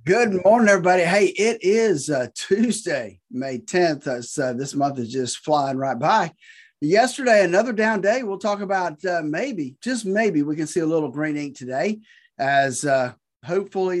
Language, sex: English, male